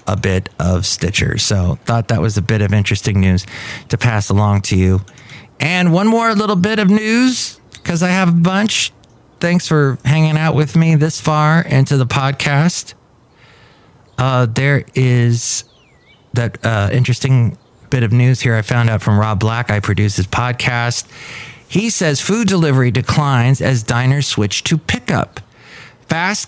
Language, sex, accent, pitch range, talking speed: English, male, American, 110-145 Hz, 165 wpm